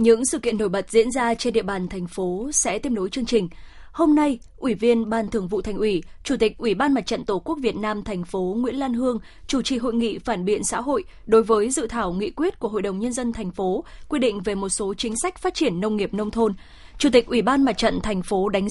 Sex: female